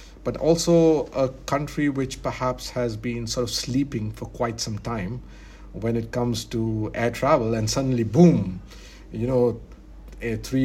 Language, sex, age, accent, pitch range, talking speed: English, male, 50-69, Indian, 105-125 Hz, 150 wpm